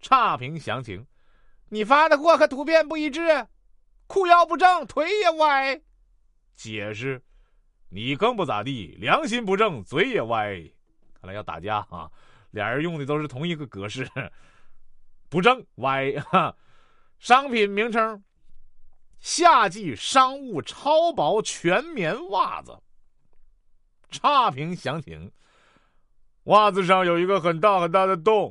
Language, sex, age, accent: Chinese, male, 30-49, native